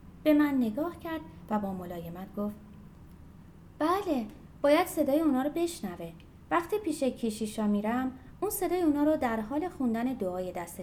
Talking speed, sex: 150 wpm, female